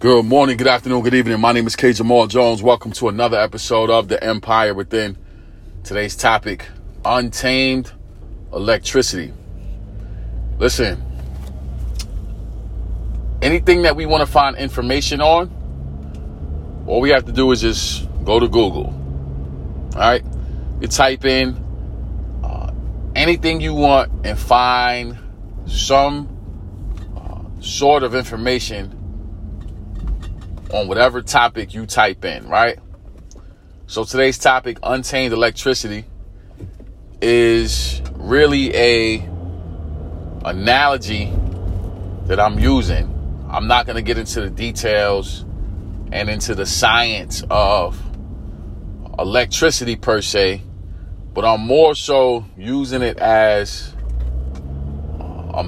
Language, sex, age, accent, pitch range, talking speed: English, male, 30-49, American, 85-120 Hz, 110 wpm